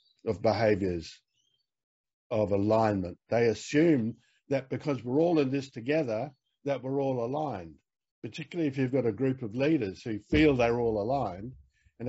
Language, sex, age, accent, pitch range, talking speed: English, male, 60-79, Australian, 115-150 Hz, 155 wpm